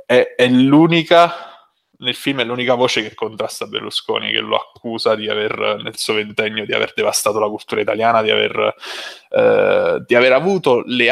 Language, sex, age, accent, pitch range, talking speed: Italian, male, 20-39, native, 110-150 Hz, 165 wpm